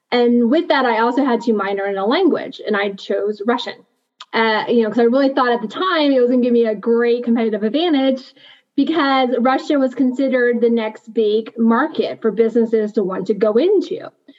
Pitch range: 220-275 Hz